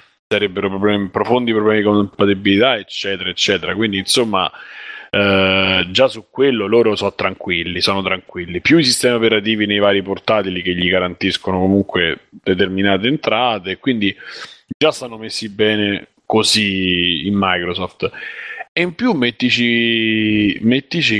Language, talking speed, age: Italian, 120 wpm, 30-49